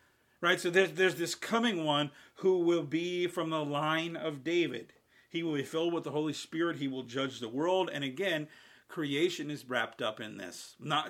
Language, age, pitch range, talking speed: English, 40-59, 135-165 Hz, 200 wpm